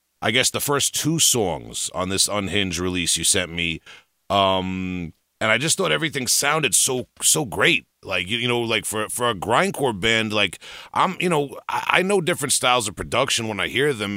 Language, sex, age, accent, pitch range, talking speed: English, male, 40-59, American, 95-125 Hz, 205 wpm